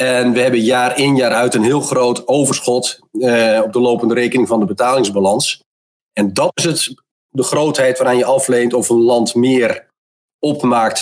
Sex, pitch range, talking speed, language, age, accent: male, 110-130 Hz, 180 wpm, Dutch, 40-59, Dutch